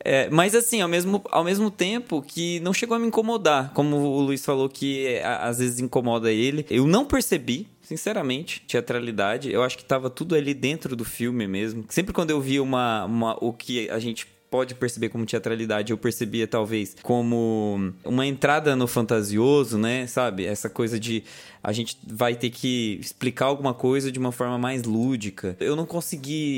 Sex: male